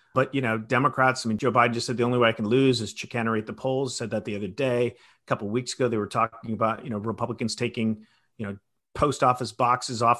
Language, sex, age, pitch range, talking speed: English, male, 40-59, 110-130 Hz, 260 wpm